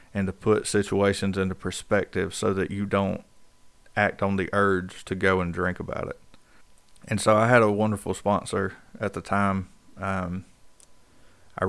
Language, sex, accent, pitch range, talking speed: English, male, American, 95-105 Hz, 165 wpm